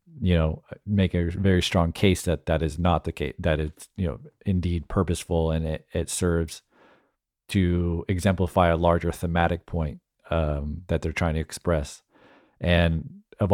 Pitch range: 85-100 Hz